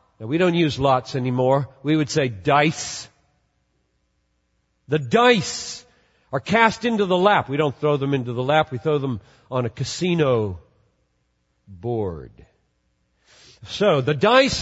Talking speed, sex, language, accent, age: 140 wpm, male, English, American, 50-69